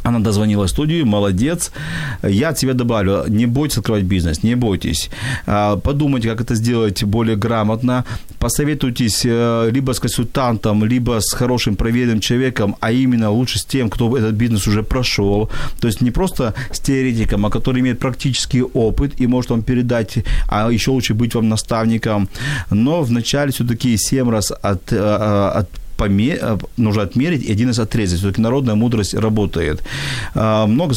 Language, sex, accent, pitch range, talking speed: Ukrainian, male, native, 110-130 Hz, 150 wpm